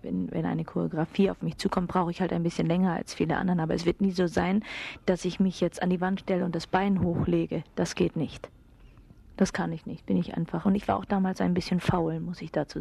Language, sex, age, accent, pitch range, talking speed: German, female, 40-59, German, 185-220 Hz, 255 wpm